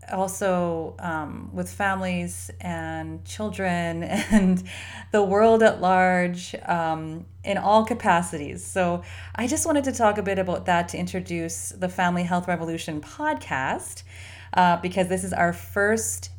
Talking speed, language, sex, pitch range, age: 140 wpm, English, female, 155-200 Hz, 30-49